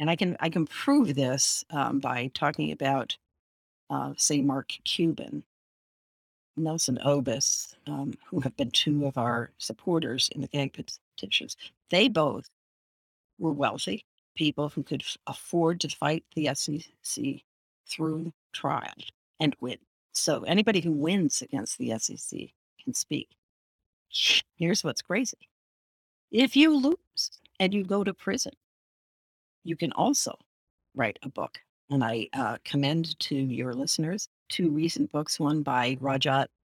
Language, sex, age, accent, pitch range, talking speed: English, female, 50-69, American, 140-170 Hz, 140 wpm